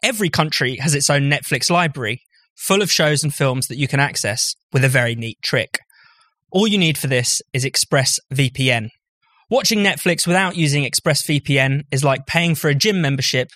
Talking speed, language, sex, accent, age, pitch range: 175 wpm, English, male, British, 20-39, 135-180 Hz